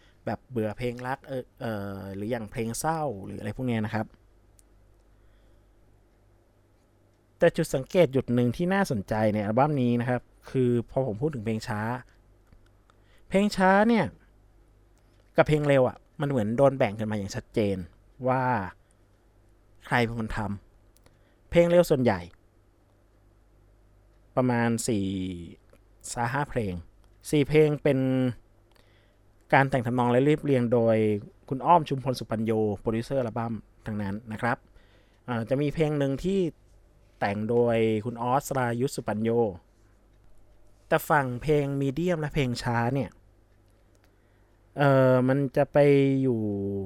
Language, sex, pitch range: Thai, male, 105-135 Hz